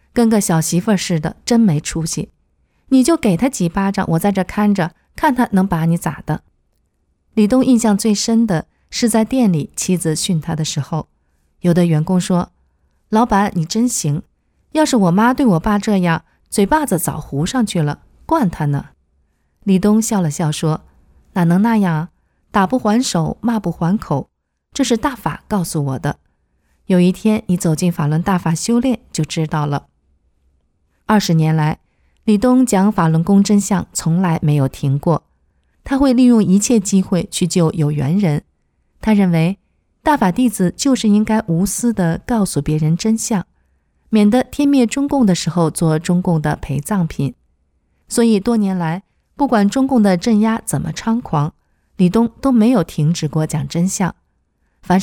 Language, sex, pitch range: Chinese, female, 155-220 Hz